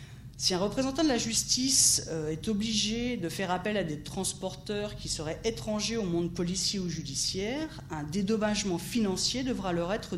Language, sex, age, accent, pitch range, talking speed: French, female, 40-59, French, 165-220 Hz, 165 wpm